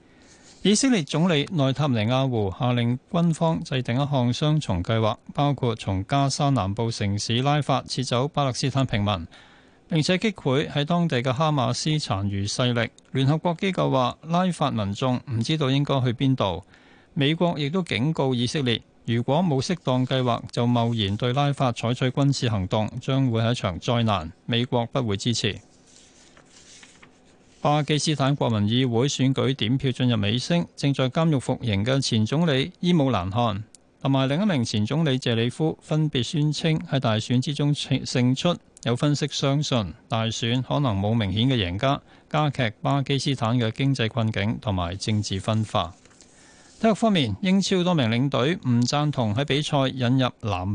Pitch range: 115-145 Hz